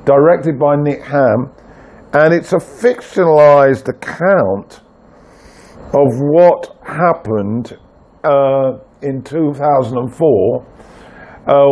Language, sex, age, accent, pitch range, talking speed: English, male, 50-69, British, 125-155 Hz, 75 wpm